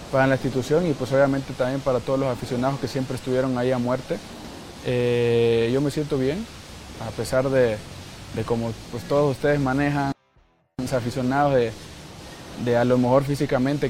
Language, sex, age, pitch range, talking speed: Spanish, male, 20-39, 120-145 Hz, 170 wpm